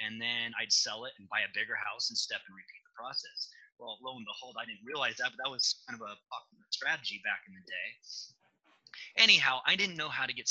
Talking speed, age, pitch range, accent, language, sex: 240 wpm, 30-49, 110-140 Hz, American, English, male